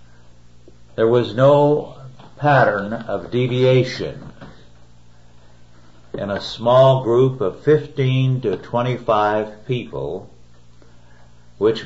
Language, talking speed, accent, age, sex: English, 80 wpm, American, 60-79, male